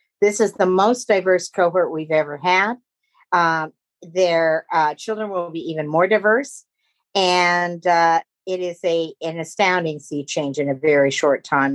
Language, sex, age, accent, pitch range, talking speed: English, female, 50-69, American, 175-220 Hz, 160 wpm